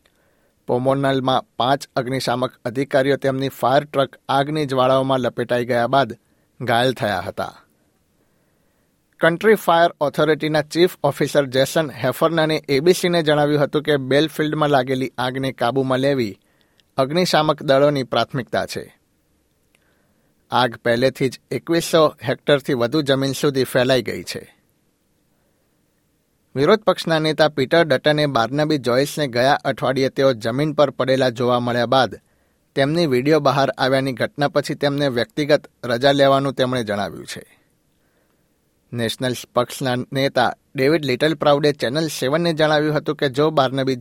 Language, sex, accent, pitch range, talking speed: Gujarati, male, native, 130-150 Hz, 120 wpm